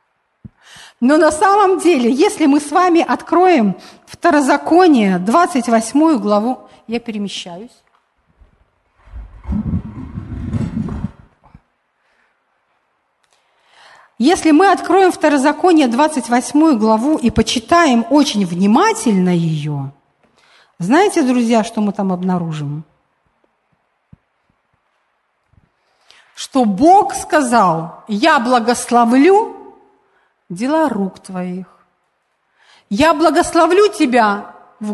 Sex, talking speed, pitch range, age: female, 75 wpm, 210-320 Hz, 50-69